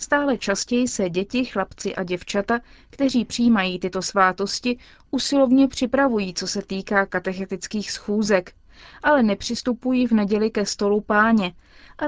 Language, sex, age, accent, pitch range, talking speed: Czech, female, 20-39, native, 200-250 Hz, 130 wpm